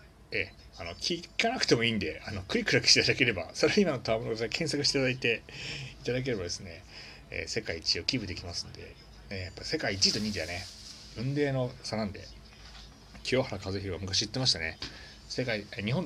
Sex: male